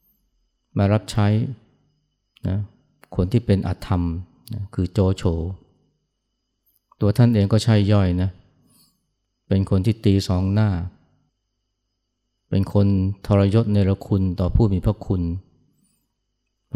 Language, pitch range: Thai, 95-110 Hz